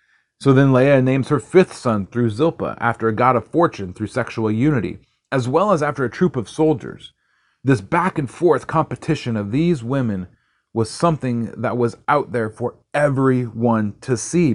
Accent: American